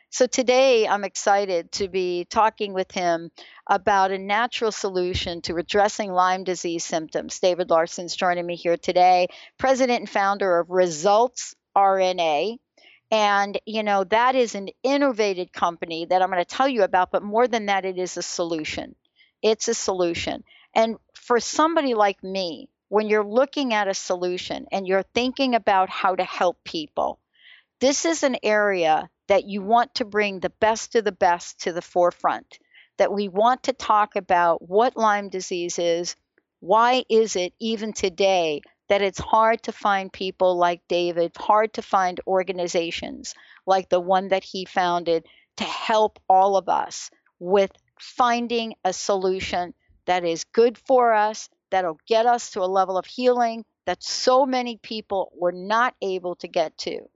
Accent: American